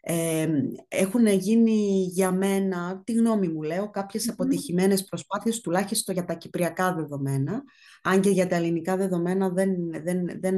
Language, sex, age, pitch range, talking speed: Greek, female, 30-49, 165-225 Hz, 135 wpm